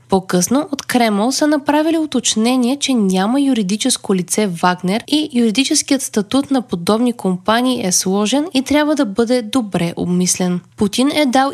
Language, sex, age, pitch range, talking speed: Bulgarian, female, 20-39, 195-265 Hz, 145 wpm